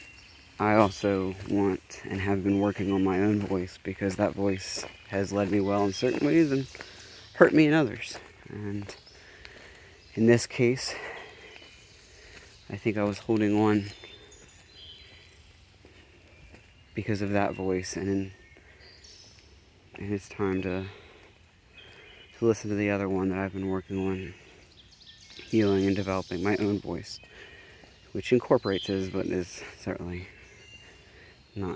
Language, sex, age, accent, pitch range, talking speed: English, male, 20-39, American, 95-105 Hz, 130 wpm